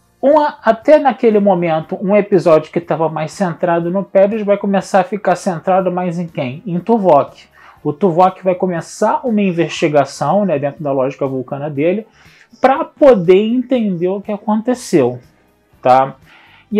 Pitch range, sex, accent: 145-205 Hz, male, Brazilian